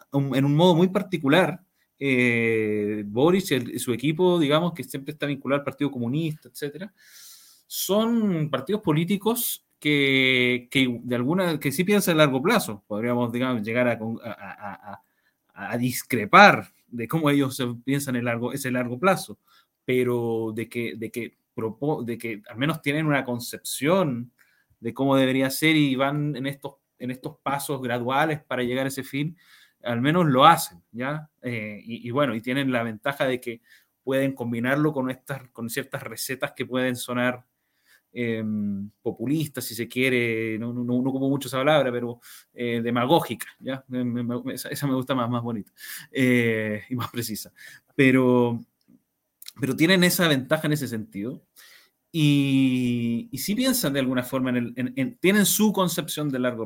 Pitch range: 120-145 Hz